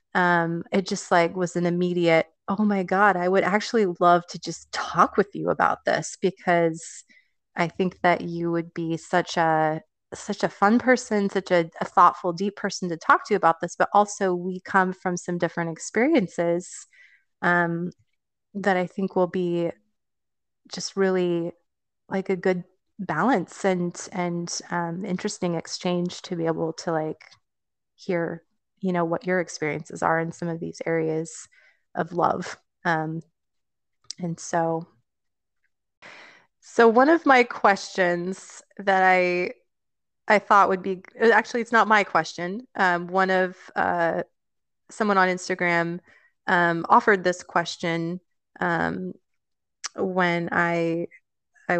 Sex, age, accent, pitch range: female, 30-49, American, 170-195 Hz